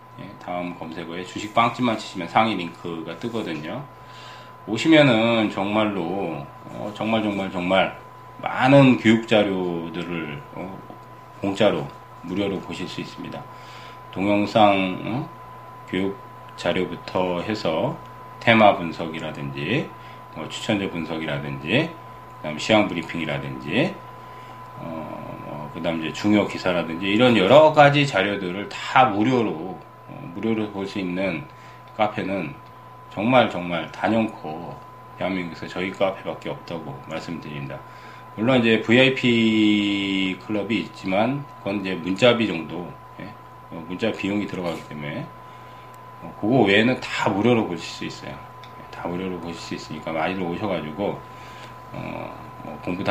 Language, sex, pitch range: Korean, male, 85-110 Hz